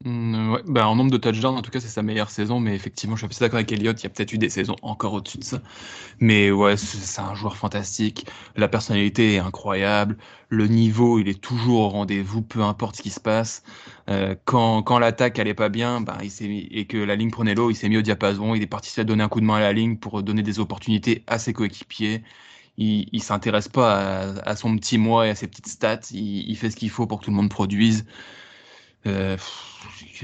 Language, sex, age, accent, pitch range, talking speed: French, male, 20-39, French, 105-115 Hz, 240 wpm